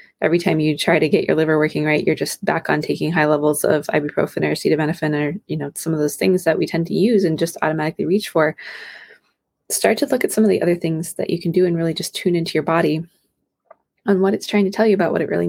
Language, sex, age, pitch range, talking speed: English, female, 20-39, 165-210 Hz, 265 wpm